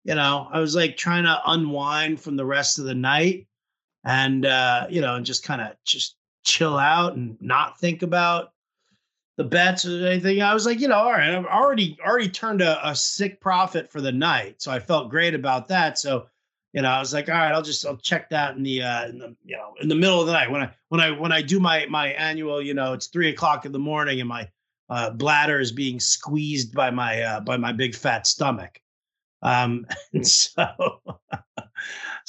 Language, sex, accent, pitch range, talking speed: English, male, American, 130-180 Hz, 220 wpm